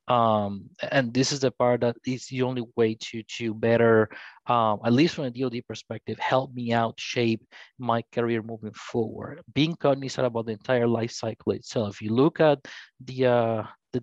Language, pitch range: English, 110-130 Hz